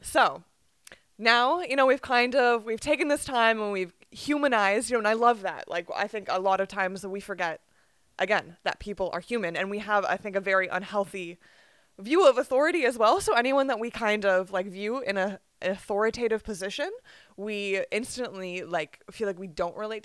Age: 20-39